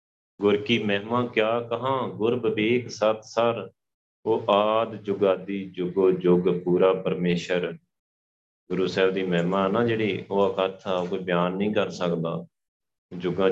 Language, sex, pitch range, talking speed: Punjabi, male, 95-115 Hz, 130 wpm